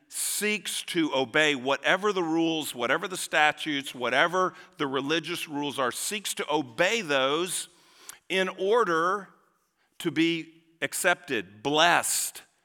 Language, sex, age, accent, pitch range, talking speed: English, male, 50-69, American, 145-185 Hz, 115 wpm